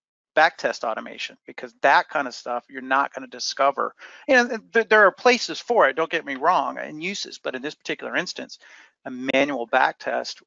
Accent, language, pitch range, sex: American, English, 120-140 Hz, male